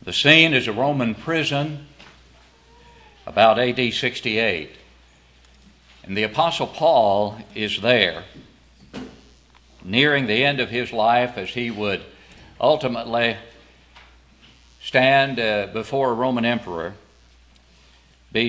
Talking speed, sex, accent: 105 wpm, male, American